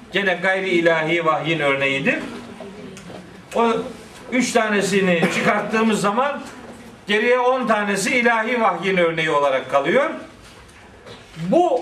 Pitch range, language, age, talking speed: 200-250 Hz, Turkish, 50-69, 95 wpm